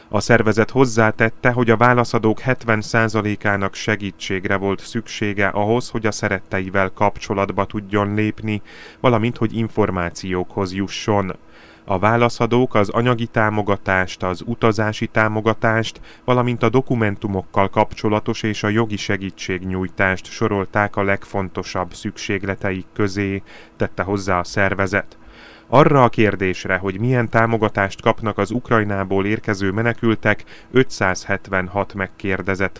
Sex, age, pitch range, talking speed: male, 30-49, 100-115 Hz, 110 wpm